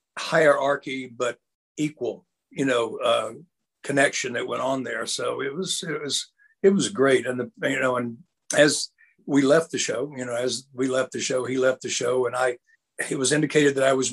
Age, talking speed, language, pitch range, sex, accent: 60-79, 205 wpm, English, 135-170 Hz, male, American